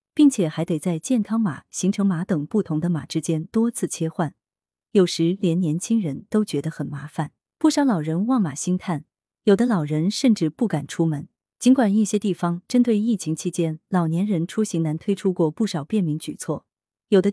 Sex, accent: female, native